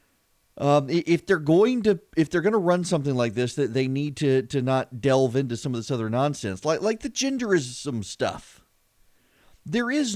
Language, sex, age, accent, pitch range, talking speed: English, male, 40-59, American, 115-175 Hz, 195 wpm